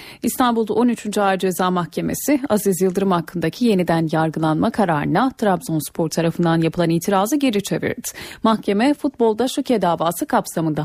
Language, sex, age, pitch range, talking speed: Turkish, female, 30-49, 175-235 Hz, 120 wpm